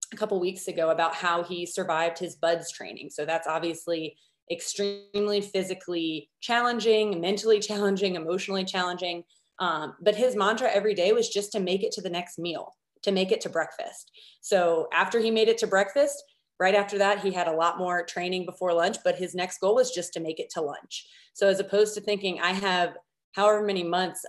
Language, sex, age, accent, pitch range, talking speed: English, female, 30-49, American, 175-210 Hz, 200 wpm